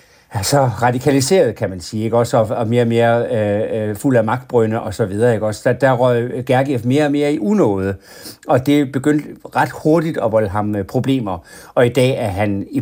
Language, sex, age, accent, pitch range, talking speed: Danish, male, 60-79, native, 110-135 Hz, 200 wpm